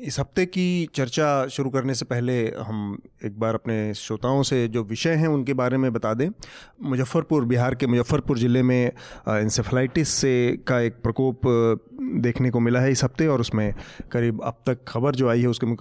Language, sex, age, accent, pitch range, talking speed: Hindi, male, 30-49, native, 120-140 Hz, 185 wpm